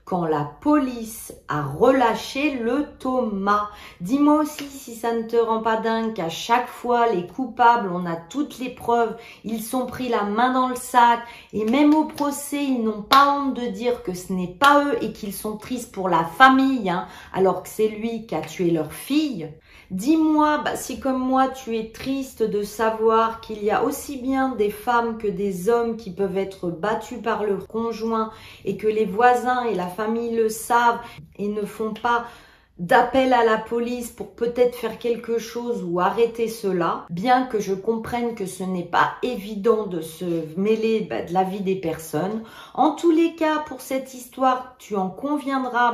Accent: French